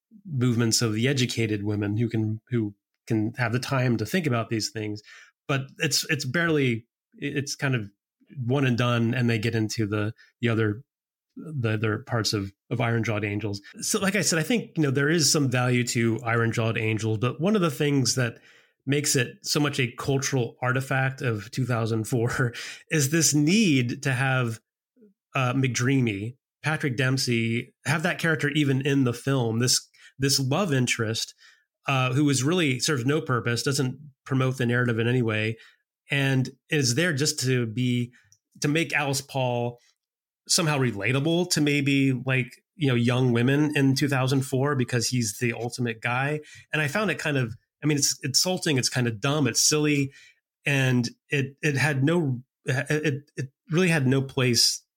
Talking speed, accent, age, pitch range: 175 wpm, American, 30-49, 120-145 Hz